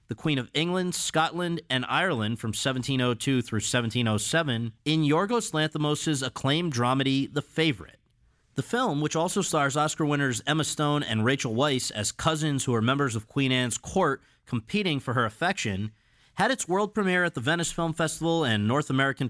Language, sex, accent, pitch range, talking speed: English, male, American, 115-155 Hz, 170 wpm